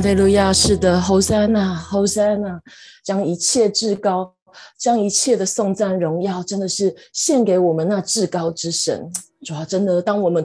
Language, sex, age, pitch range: Chinese, female, 20-39, 200-260 Hz